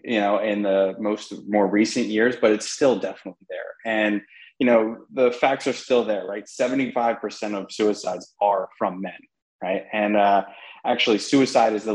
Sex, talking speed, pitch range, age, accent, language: male, 185 wpm, 100-115 Hz, 20-39, American, English